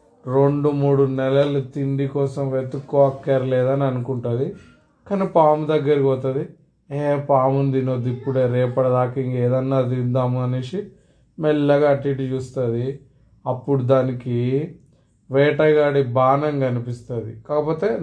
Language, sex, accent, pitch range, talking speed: Telugu, male, native, 125-150 Hz, 105 wpm